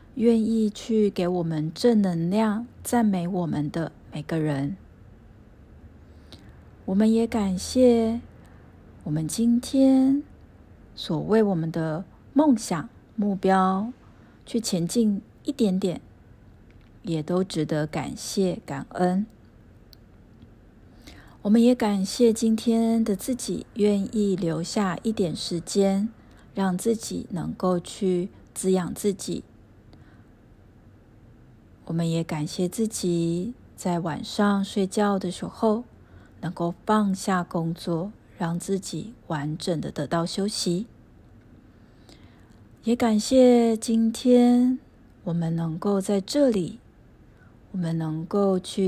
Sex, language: female, Chinese